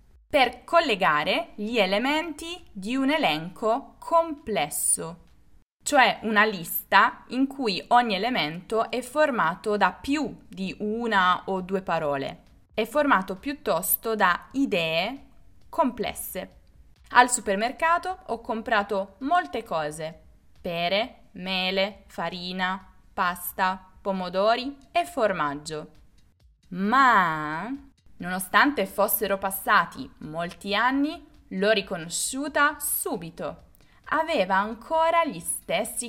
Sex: female